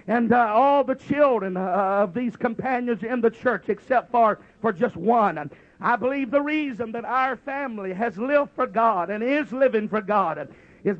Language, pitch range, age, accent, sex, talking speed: English, 230-270 Hz, 50-69, American, male, 185 wpm